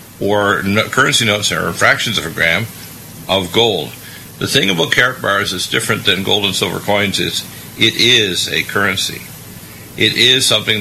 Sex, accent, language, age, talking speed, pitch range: male, American, English, 50-69, 170 wpm, 100-115 Hz